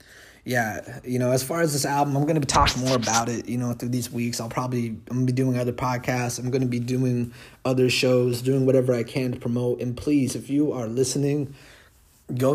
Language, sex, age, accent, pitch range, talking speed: English, male, 30-49, American, 120-135 Hz, 225 wpm